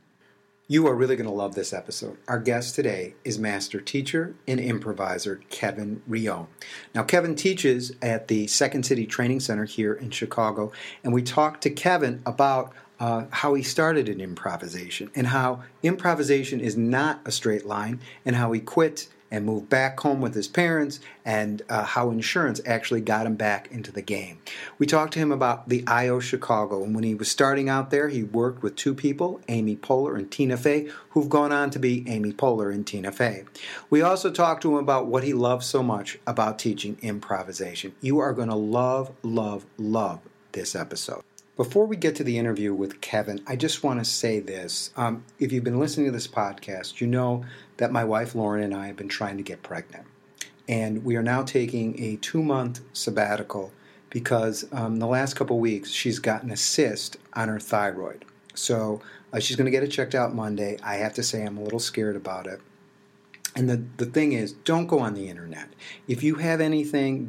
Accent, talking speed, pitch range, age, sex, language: American, 195 wpm, 105-140 Hz, 50-69, male, English